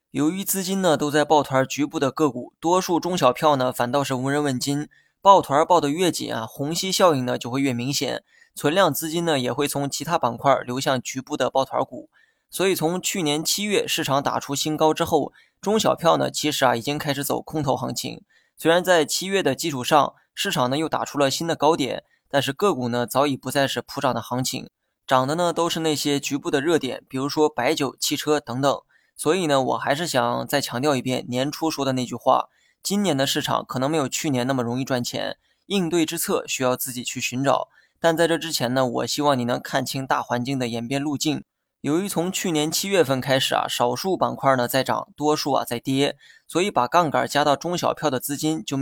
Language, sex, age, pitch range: Chinese, male, 20-39, 130-160 Hz